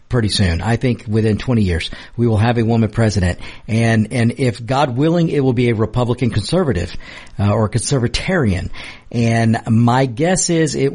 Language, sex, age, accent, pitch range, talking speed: English, male, 50-69, American, 115-155 Hz, 180 wpm